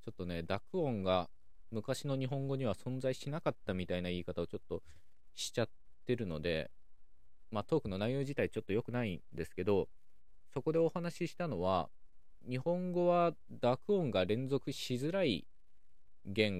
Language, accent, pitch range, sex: Japanese, native, 85-135 Hz, male